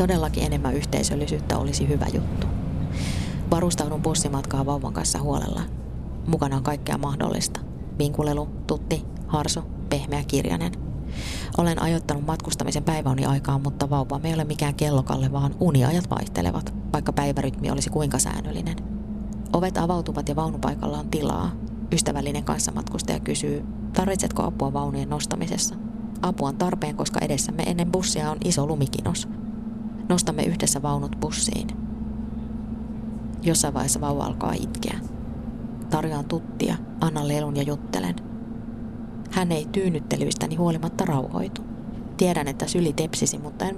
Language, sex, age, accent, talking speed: Finnish, female, 20-39, native, 120 wpm